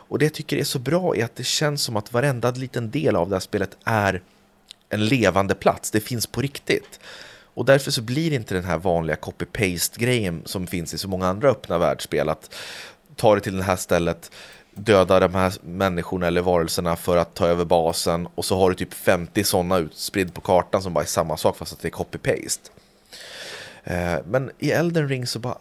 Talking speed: 210 wpm